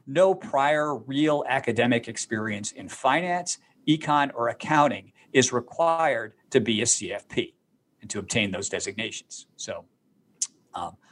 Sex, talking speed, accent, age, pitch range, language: male, 125 wpm, American, 50-69, 115-150 Hz, English